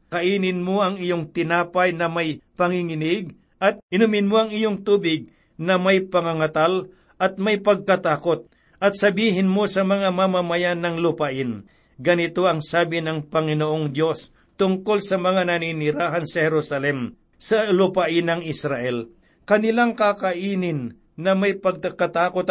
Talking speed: 130 wpm